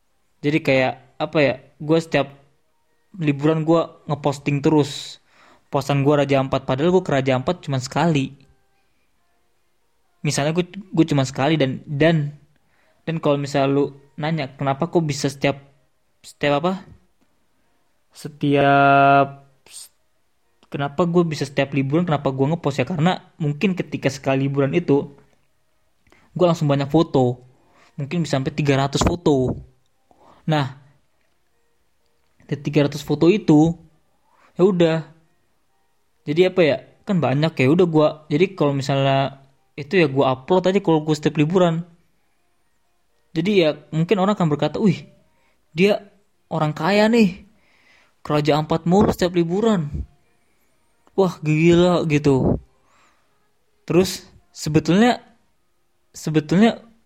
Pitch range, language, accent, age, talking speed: 140-175 Hz, Indonesian, native, 20-39, 120 wpm